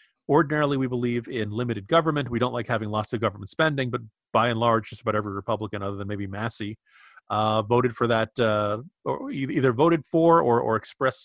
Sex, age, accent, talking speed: male, 40-59, American, 205 wpm